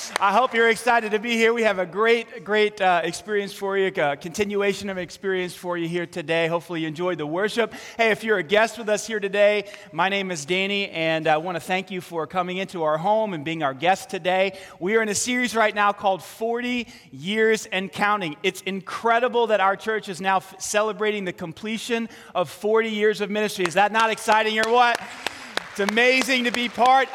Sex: male